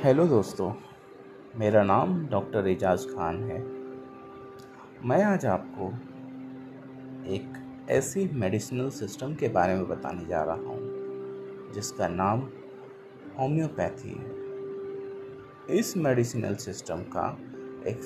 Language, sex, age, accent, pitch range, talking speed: Hindi, male, 30-49, native, 100-135 Hz, 105 wpm